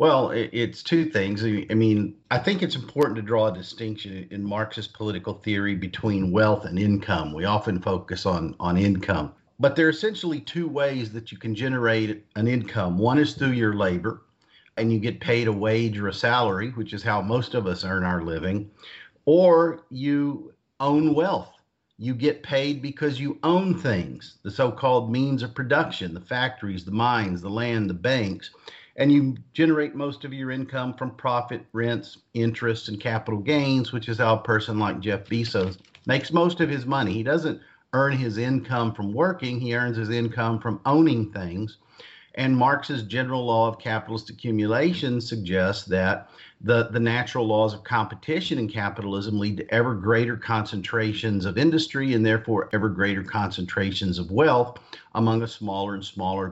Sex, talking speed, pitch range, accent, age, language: male, 175 wpm, 100-130 Hz, American, 50-69, English